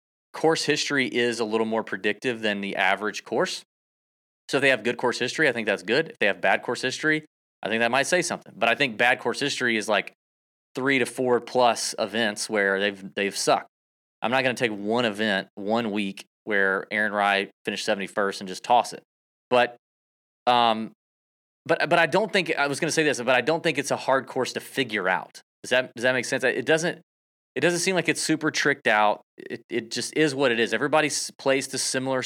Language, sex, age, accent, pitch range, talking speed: English, male, 20-39, American, 105-135 Hz, 225 wpm